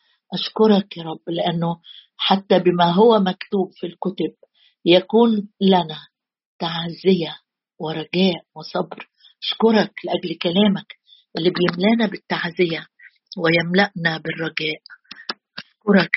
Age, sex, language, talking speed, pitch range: 50-69, female, Arabic, 90 wpm, 170-225 Hz